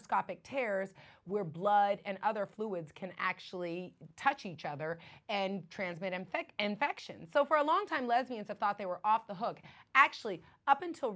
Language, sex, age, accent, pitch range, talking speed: English, female, 30-49, American, 185-240 Hz, 160 wpm